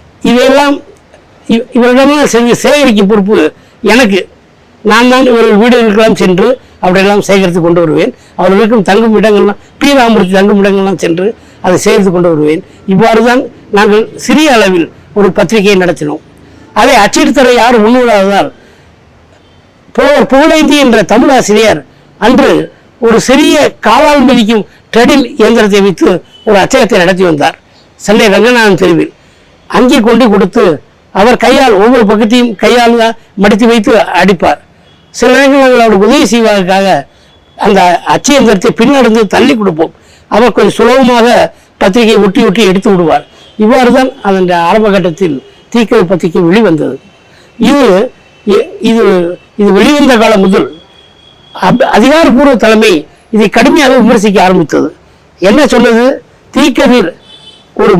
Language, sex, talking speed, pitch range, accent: Tamil, female, 115 wpm, 195-245 Hz, native